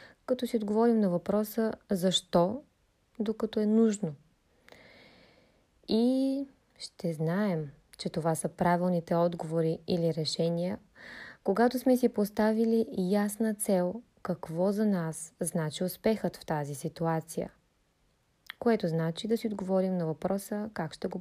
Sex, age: female, 20-39